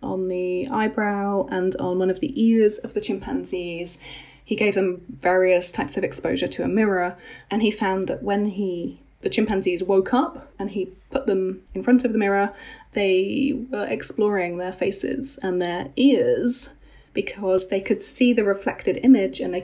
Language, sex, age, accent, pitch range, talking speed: English, female, 20-39, British, 180-220 Hz, 175 wpm